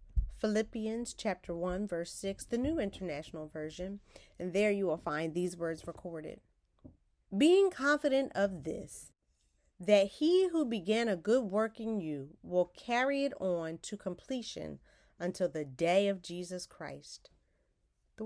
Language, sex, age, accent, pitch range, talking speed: English, female, 30-49, American, 175-230 Hz, 140 wpm